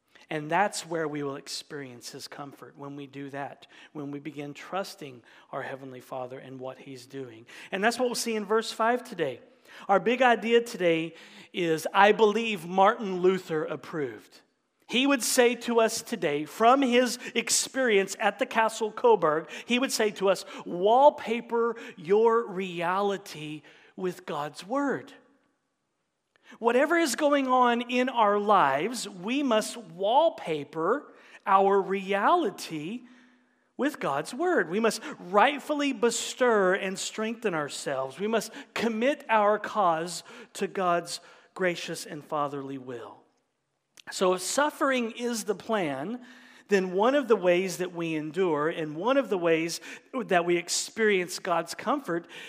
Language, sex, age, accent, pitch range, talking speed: English, male, 40-59, American, 165-235 Hz, 140 wpm